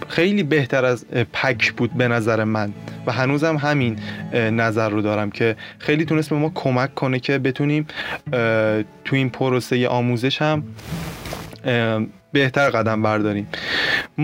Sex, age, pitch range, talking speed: male, 20-39, 125-160 Hz, 150 wpm